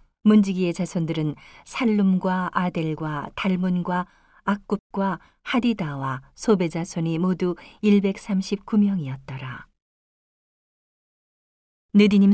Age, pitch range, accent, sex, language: 40-59, 165-200 Hz, native, female, Korean